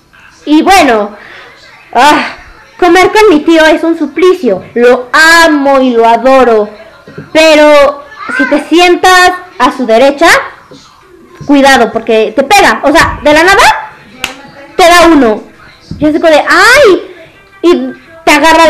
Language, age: Spanish, 20-39